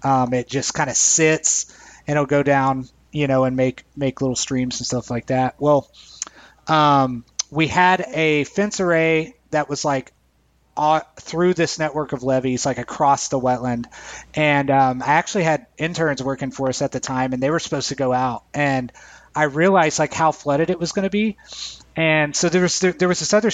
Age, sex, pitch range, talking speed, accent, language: 30-49, male, 135-165 Hz, 200 wpm, American, English